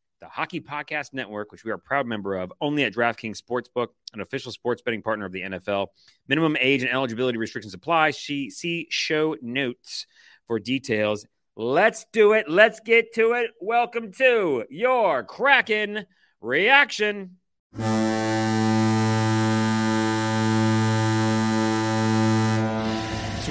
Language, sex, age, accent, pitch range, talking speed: English, male, 30-49, American, 110-155 Hz, 125 wpm